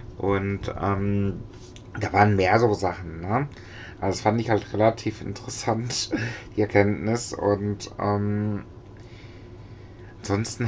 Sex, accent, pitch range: male, German, 100-120 Hz